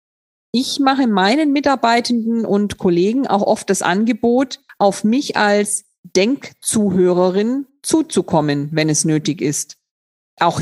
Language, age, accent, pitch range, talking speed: German, 50-69, German, 185-250 Hz, 115 wpm